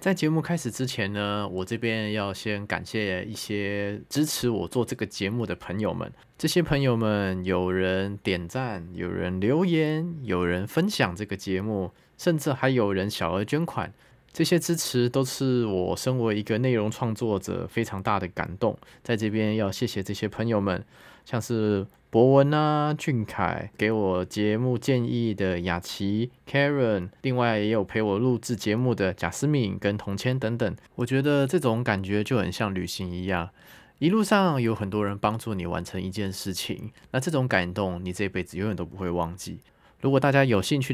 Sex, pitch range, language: male, 95-130 Hz, Chinese